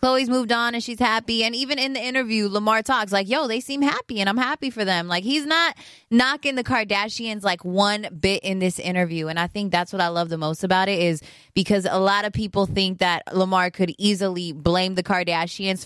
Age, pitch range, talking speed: 20-39, 175-220 Hz, 225 wpm